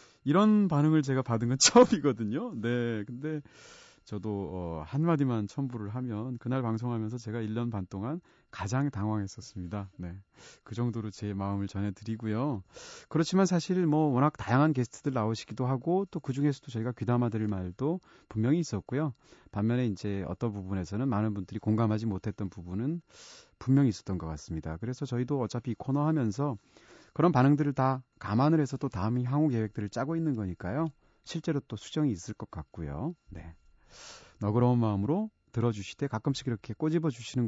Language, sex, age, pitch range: Korean, male, 30-49, 105-145 Hz